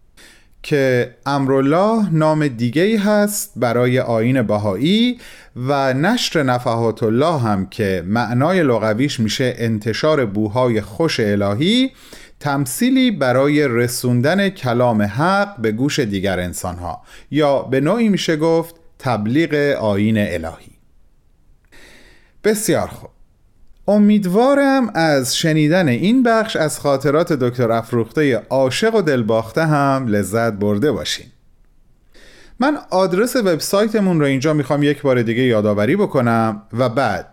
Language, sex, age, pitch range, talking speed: Persian, male, 30-49, 115-180 Hz, 115 wpm